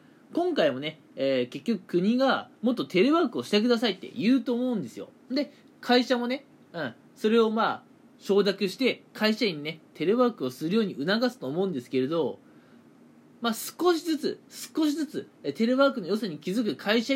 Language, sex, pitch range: Japanese, male, 185-260 Hz